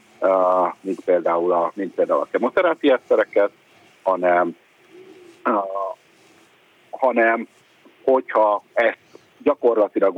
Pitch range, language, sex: 285-475 Hz, Hungarian, male